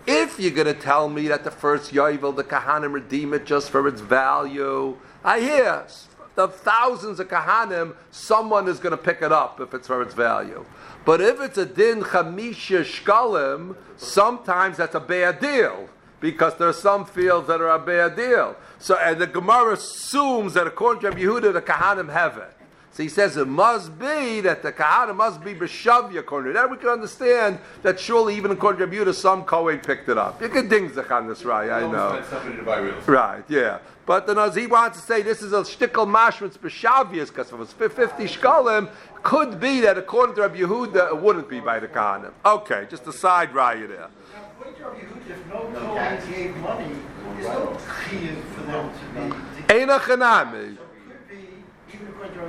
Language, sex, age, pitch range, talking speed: English, male, 50-69, 160-225 Hz, 180 wpm